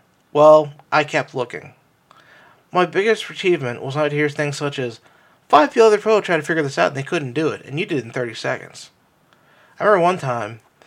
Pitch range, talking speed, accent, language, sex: 130-170 Hz, 205 wpm, American, English, male